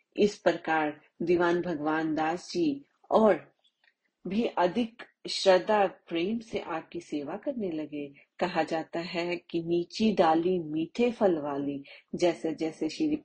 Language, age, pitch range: Hindi, 30-49, 160-220 Hz